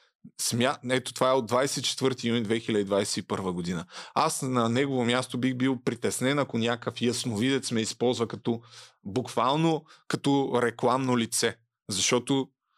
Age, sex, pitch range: 30-49, male, 115-135 Hz